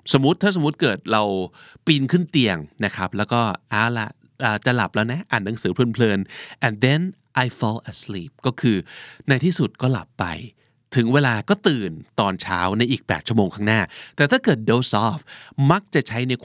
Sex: male